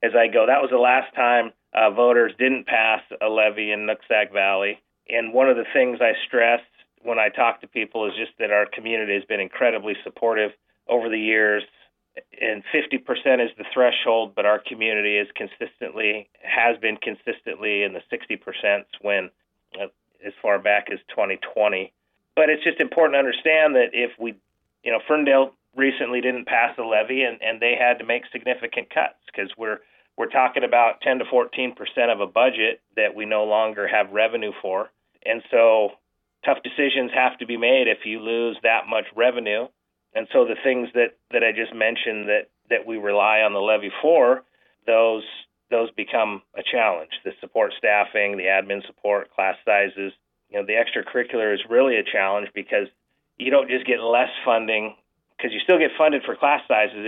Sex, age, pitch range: male, 30-49, 105-125 Hz